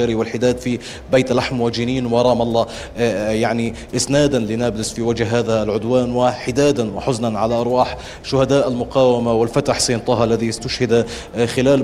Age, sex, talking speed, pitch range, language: 30-49, male, 125 wpm, 120-140 Hz, Arabic